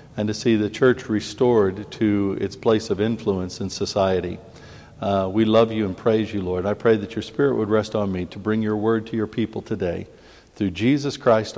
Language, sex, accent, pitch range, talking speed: English, male, American, 110-150 Hz, 210 wpm